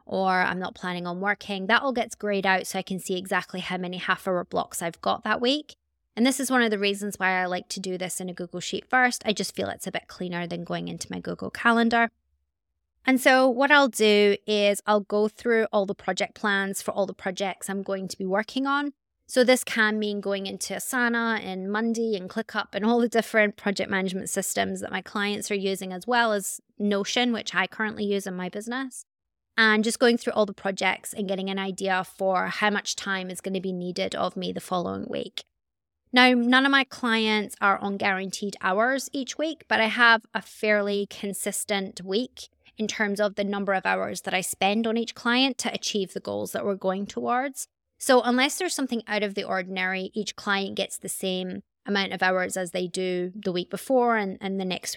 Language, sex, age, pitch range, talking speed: English, female, 20-39, 190-230 Hz, 220 wpm